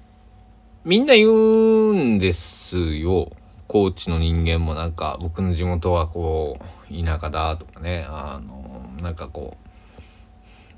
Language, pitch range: Japanese, 85-105 Hz